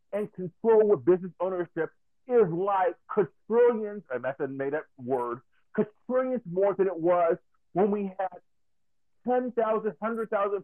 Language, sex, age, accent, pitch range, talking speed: English, male, 50-69, American, 170-210 Hz, 135 wpm